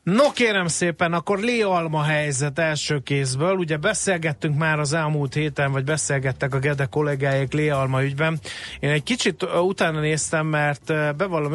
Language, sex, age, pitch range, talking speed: Hungarian, male, 30-49, 130-155 Hz, 140 wpm